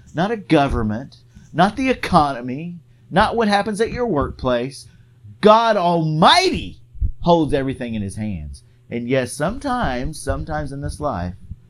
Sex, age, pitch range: male, 40-59, 115-150 Hz